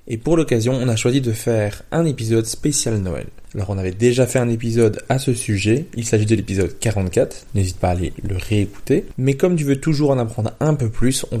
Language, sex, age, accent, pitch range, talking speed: French, male, 20-39, French, 110-140 Hz, 230 wpm